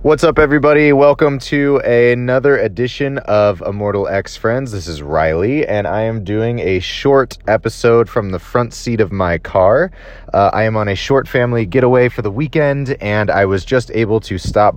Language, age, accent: English, 30-49, American